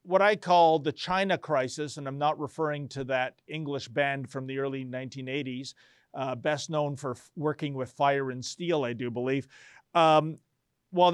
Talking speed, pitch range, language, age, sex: 170 wpm, 145-185 Hz, English, 40-59, male